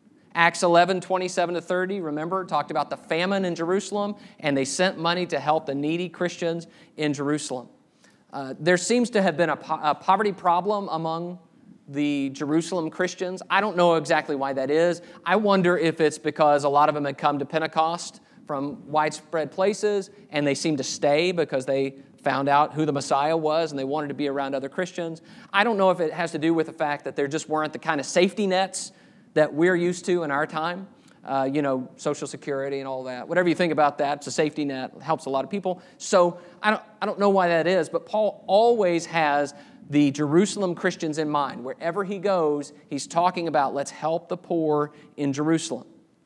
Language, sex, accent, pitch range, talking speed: English, male, American, 150-185 Hz, 210 wpm